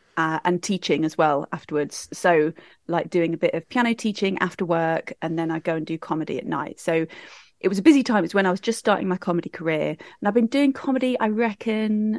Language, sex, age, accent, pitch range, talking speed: English, female, 30-49, British, 175-220 Hz, 230 wpm